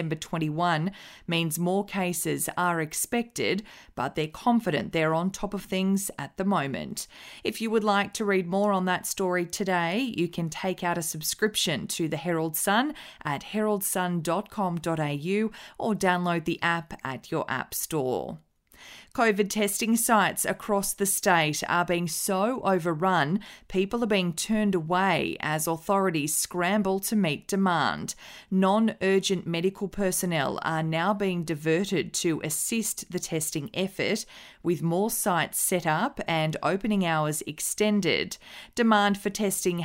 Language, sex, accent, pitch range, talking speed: English, female, Australian, 165-200 Hz, 140 wpm